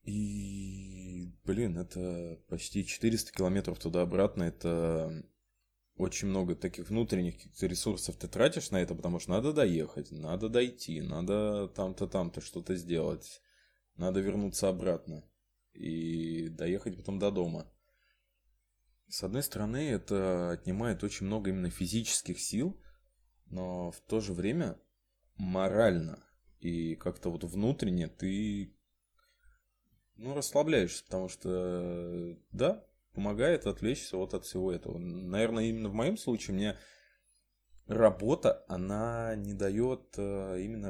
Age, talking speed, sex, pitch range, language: 20-39, 115 wpm, male, 85-105 Hz, Ukrainian